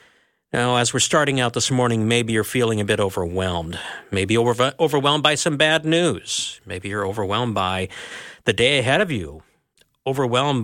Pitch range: 120-160 Hz